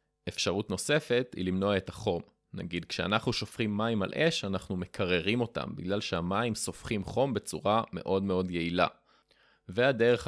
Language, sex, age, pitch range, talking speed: Hebrew, male, 20-39, 90-110 Hz, 140 wpm